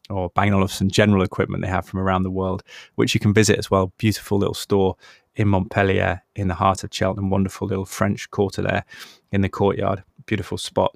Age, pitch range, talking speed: 20-39, 95-105 Hz, 210 wpm